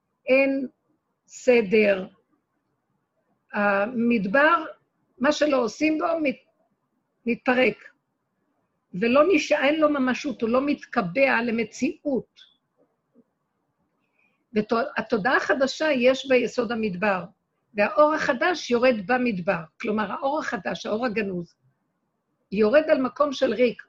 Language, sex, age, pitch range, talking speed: Hebrew, female, 50-69, 215-285 Hz, 90 wpm